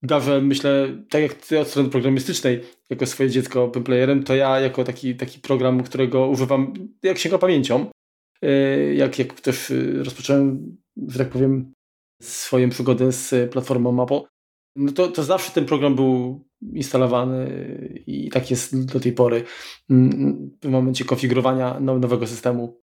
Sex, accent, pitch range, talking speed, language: male, native, 125-135 Hz, 140 wpm, Polish